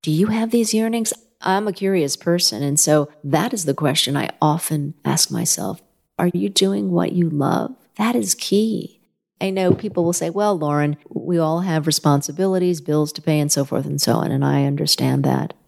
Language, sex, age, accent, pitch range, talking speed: English, female, 40-59, American, 145-180 Hz, 200 wpm